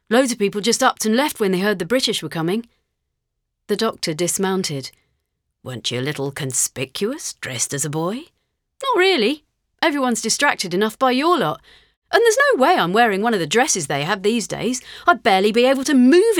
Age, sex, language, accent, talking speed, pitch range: 40-59, female, English, British, 200 wpm, 160-250 Hz